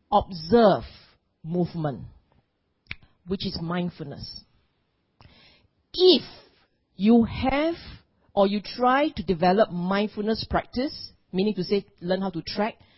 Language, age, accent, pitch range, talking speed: English, 40-59, Malaysian, 180-260 Hz, 100 wpm